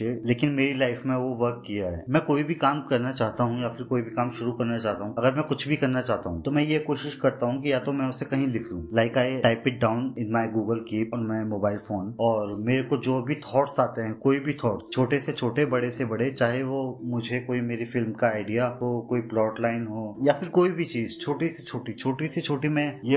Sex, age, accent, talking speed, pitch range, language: male, 20-39, Indian, 185 wpm, 120-145 Hz, English